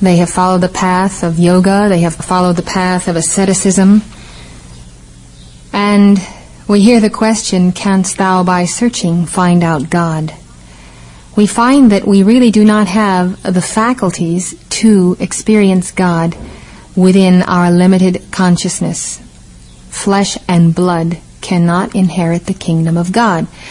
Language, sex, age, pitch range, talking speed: English, female, 40-59, 170-200 Hz, 130 wpm